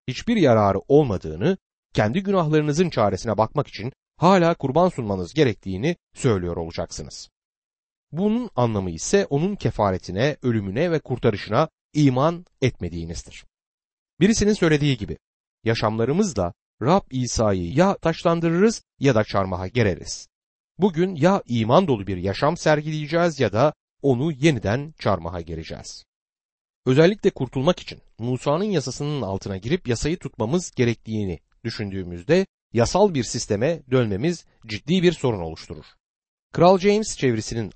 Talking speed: 115 wpm